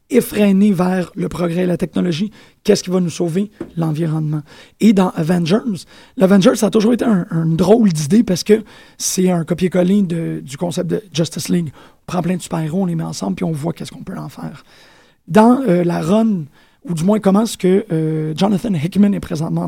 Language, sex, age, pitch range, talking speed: French, male, 30-49, 170-205 Hz, 205 wpm